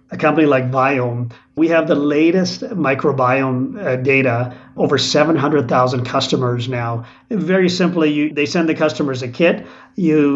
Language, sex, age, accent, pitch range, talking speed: English, male, 40-59, American, 130-165 Hz, 140 wpm